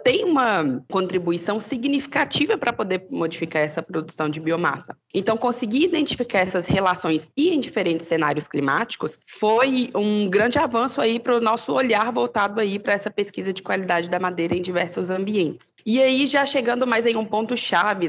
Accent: Brazilian